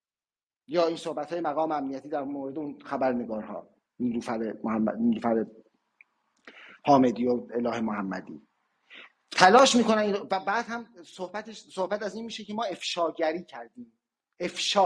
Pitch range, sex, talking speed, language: 140-185 Hz, male, 135 wpm, Persian